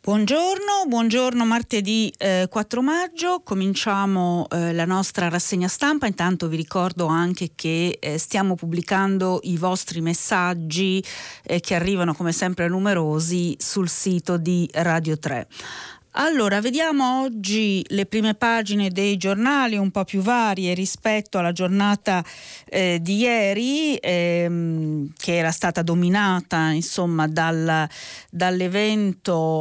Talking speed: 120 wpm